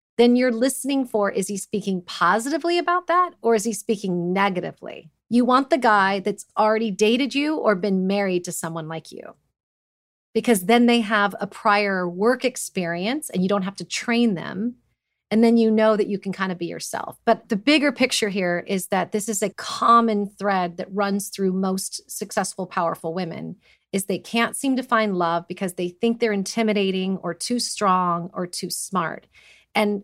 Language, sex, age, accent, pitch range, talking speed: English, female, 30-49, American, 190-235 Hz, 190 wpm